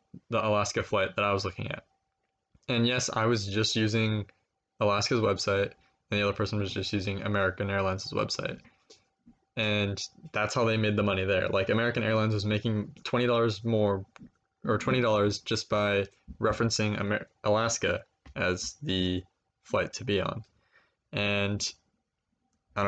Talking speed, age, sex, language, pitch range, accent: 145 wpm, 20-39, male, English, 100-115 Hz, American